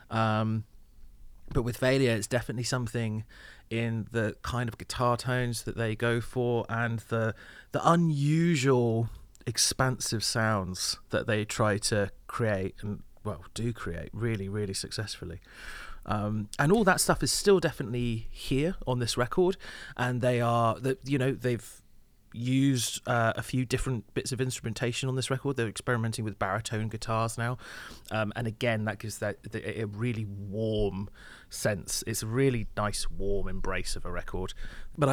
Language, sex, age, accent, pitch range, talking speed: English, male, 30-49, British, 105-125 Hz, 155 wpm